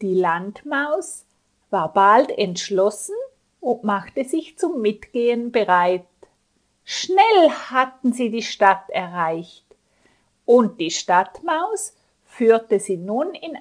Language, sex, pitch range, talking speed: Italian, female, 190-250 Hz, 105 wpm